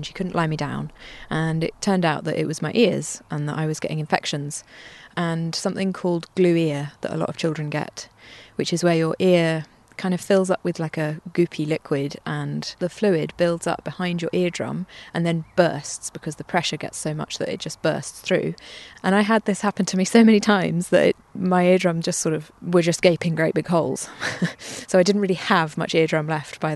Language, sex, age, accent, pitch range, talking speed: English, female, 20-39, British, 155-190 Hz, 220 wpm